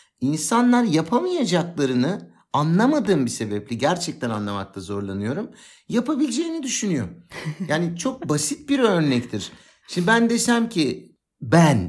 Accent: native